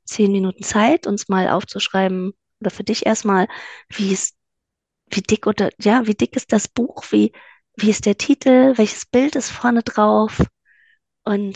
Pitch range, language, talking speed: 185-220 Hz, German, 165 wpm